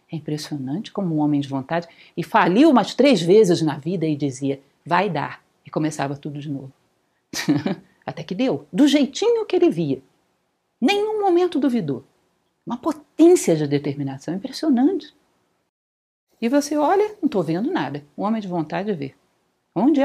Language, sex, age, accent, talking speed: Portuguese, female, 50-69, Brazilian, 155 wpm